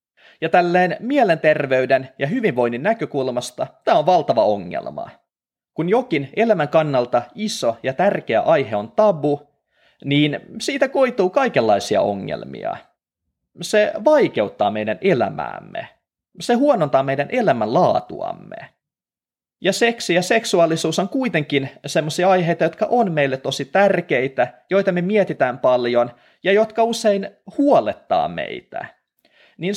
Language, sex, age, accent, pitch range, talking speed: Finnish, male, 30-49, native, 145-235 Hz, 115 wpm